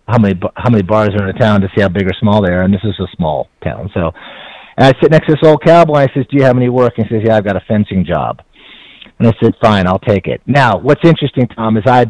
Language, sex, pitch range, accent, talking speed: English, male, 105-135 Hz, American, 310 wpm